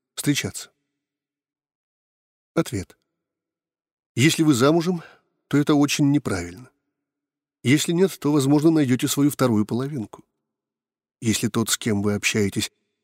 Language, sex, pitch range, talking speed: Russian, male, 115-145 Hz, 105 wpm